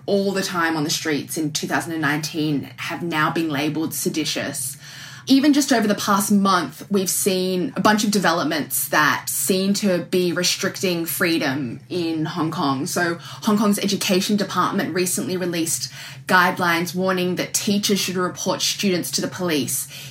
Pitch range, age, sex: 155-195 Hz, 10-29, female